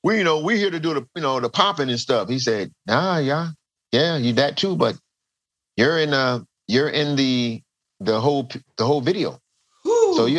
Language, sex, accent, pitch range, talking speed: English, male, American, 95-125 Hz, 210 wpm